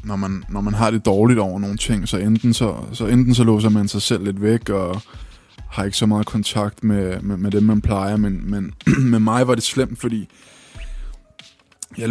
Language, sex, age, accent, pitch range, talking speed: Danish, male, 20-39, native, 100-110 Hz, 195 wpm